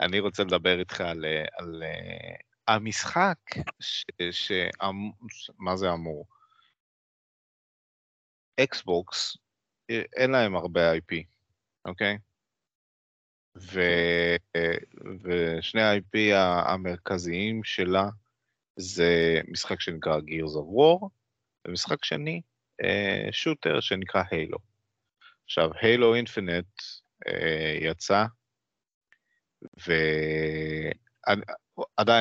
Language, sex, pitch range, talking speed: Hebrew, male, 85-125 Hz, 75 wpm